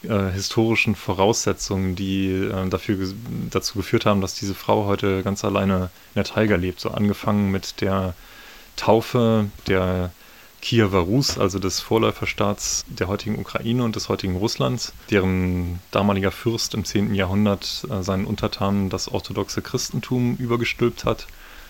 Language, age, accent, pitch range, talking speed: German, 30-49, German, 95-110 Hz, 140 wpm